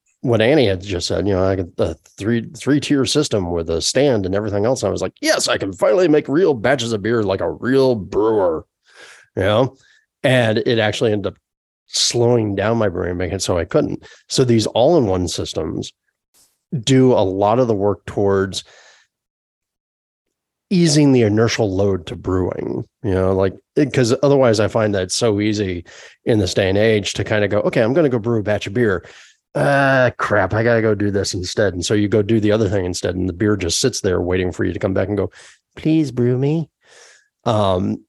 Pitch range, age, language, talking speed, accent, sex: 100-125 Hz, 30-49, English, 210 wpm, American, male